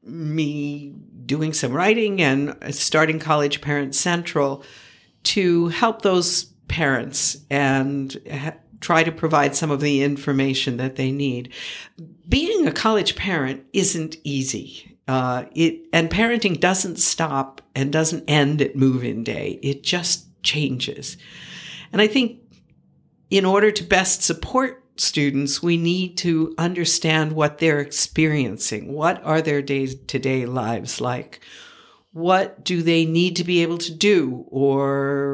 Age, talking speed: 60-79, 135 wpm